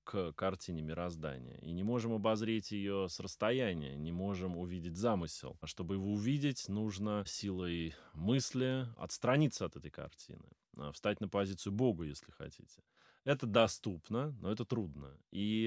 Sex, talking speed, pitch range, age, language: male, 140 wpm, 90-125 Hz, 20-39, Russian